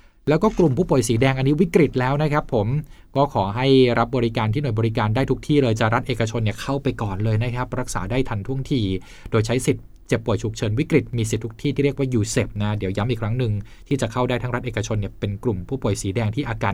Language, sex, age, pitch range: Thai, male, 20-39, 105-125 Hz